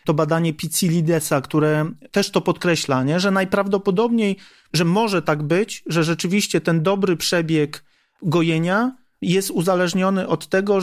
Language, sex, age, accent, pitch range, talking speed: Polish, male, 40-59, native, 165-195 Hz, 130 wpm